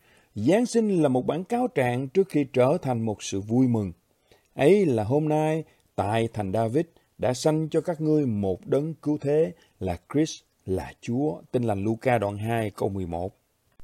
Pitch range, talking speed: 110-160 Hz, 180 wpm